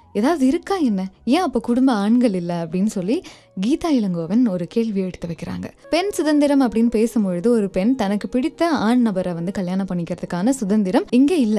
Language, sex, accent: Tamil, female, native